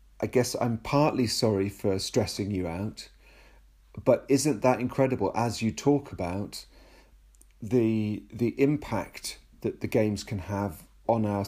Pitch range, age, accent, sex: 100-125 Hz, 40-59, British, male